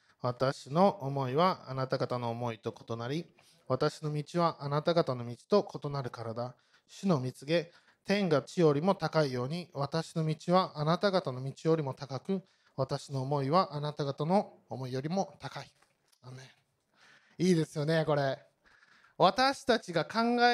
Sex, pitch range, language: male, 155-240 Hz, Japanese